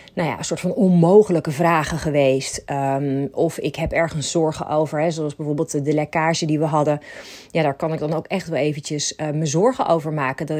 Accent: Dutch